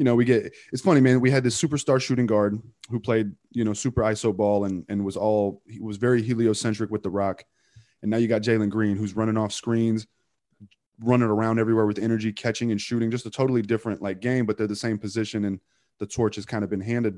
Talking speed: 240 wpm